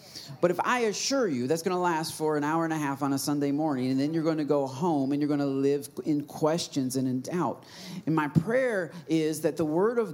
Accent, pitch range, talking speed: American, 140-185 Hz, 260 wpm